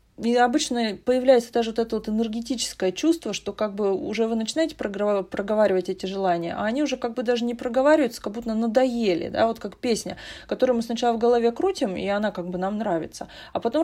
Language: Russian